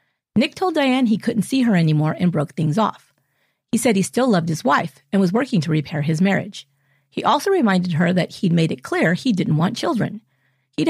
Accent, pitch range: American, 165-235 Hz